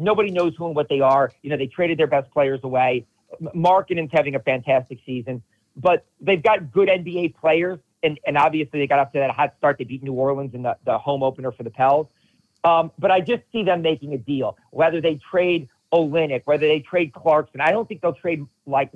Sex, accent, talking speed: male, American, 225 wpm